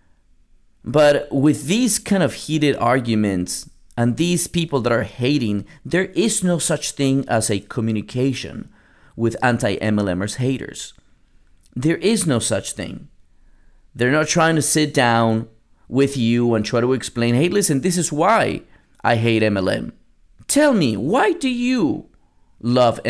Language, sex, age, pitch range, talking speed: English, male, 30-49, 110-150 Hz, 145 wpm